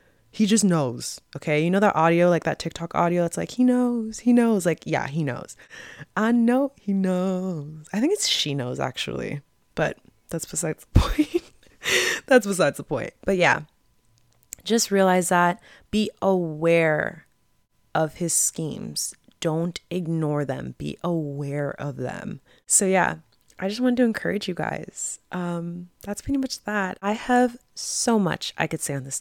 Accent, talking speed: American, 165 wpm